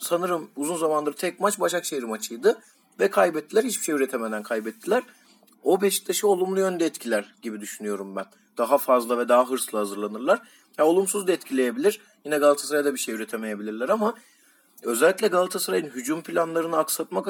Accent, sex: native, male